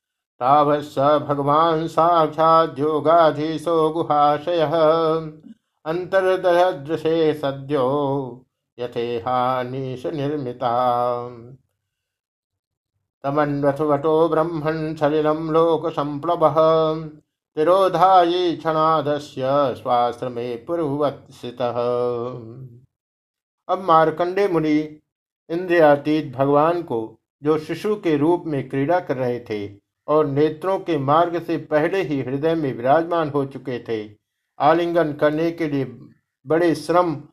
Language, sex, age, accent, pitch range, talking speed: Hindi, male, 50-69, native, 135-165 Hz, 70 wpm